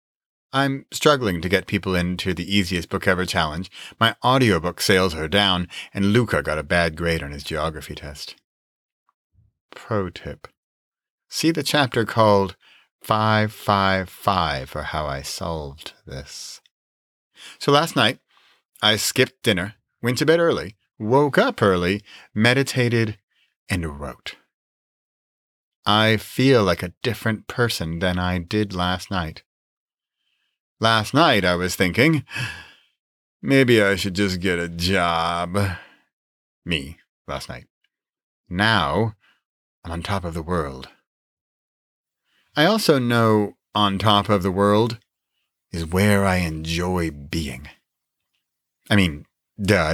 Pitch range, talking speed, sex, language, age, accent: 85-115 Hz, 125 wpm, male, English, 40-59, American